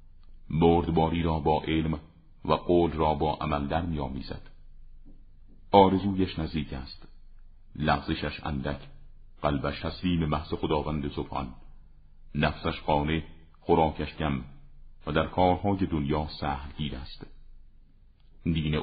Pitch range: 75-90 Hz